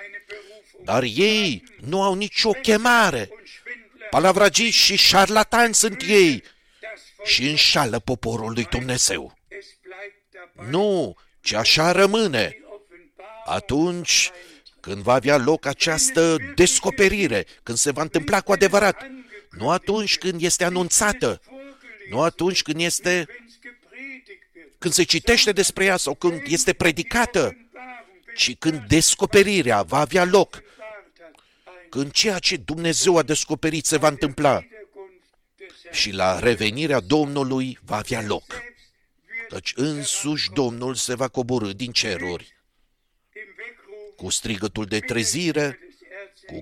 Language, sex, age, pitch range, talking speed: Romanian, male, 50-69, 130-205 Hz, 110 wpm